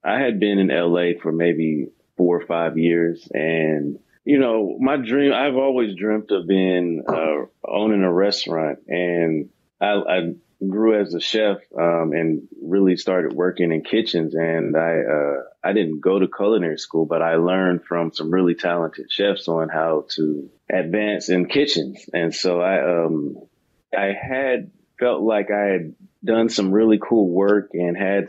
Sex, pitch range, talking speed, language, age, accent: male, 85-100 Hz, 170 wpm, English, 30-49, American